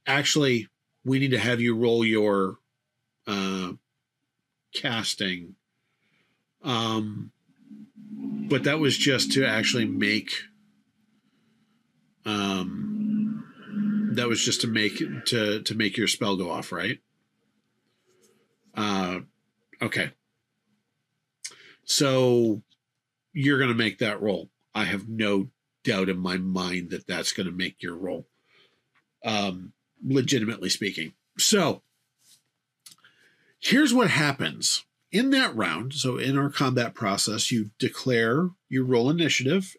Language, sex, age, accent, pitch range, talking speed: English, male, 40-59, American, 110-170 Hz, 115 wpm